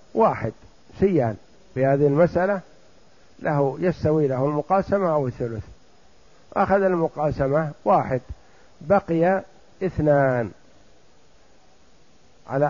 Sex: male